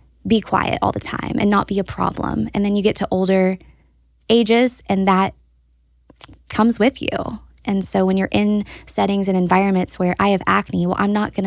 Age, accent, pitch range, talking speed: 10-29, American, 170-195 Hz, 200 wpm